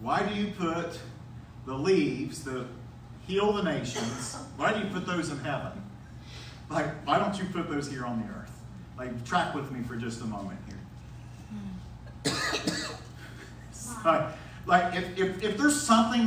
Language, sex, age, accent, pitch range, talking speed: English, male, 50-69, American, 140-210 Hz, 155 wpm